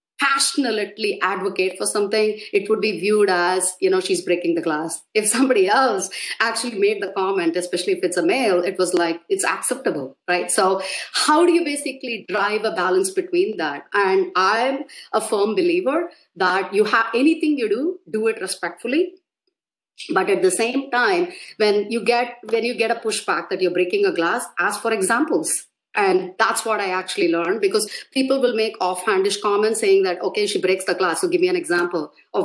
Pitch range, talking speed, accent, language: 185-295 Hz, 190 wpm, Indian, English